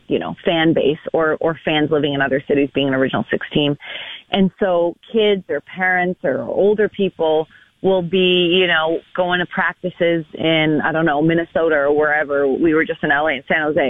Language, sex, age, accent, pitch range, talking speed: English, female, 30-49, American, 150-185 Hz, 200 wpm